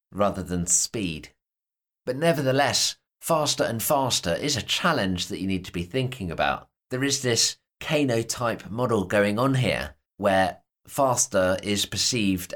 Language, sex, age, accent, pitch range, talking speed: English, male, 30-49, British, 95-130 Hz, 150 wpm